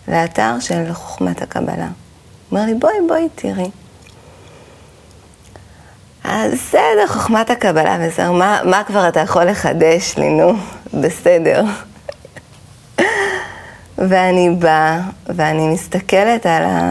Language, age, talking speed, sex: Hebrew, 30-49, 100 wpm, female